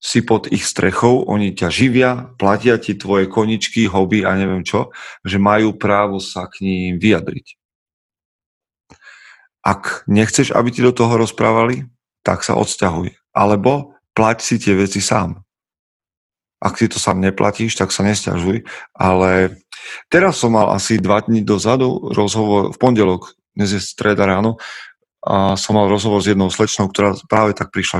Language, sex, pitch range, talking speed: Slovak, male, 95-115 Hz, 155 wpm